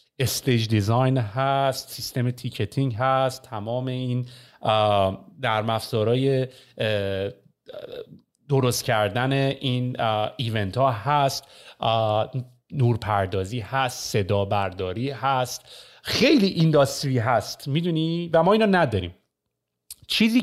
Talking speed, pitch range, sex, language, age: 90 wpm, 125-175 Hz, male, Persian, 40-59